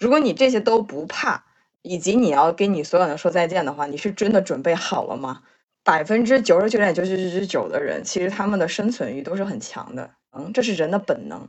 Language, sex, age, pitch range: Chinese, female, 20-39, 165-235 Hz